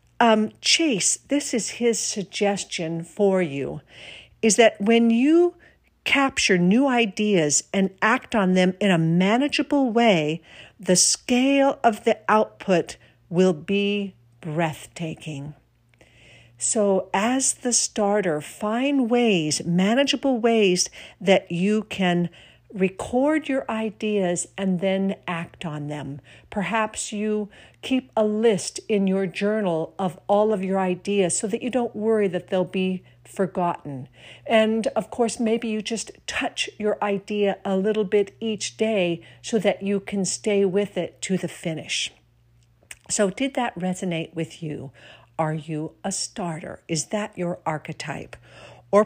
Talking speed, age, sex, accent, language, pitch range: 135 wpm, 60-79, female, American, English, 170-220 Hz